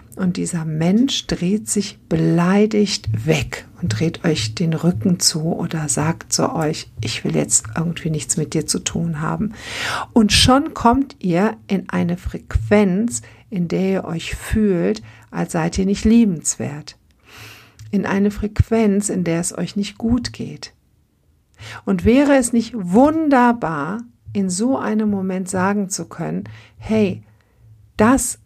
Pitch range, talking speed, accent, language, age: 160-210 Hz, 145 wpm, German, German, 60-79